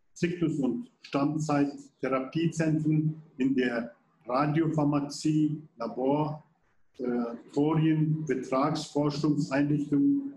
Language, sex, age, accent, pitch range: Turkish, male, 50-69, German, 140-165 Hz